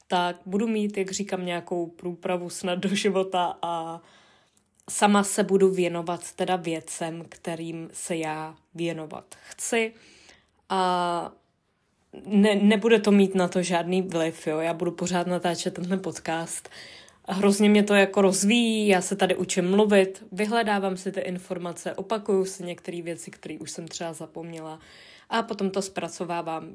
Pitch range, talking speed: 180-210 Hz, 140 wpm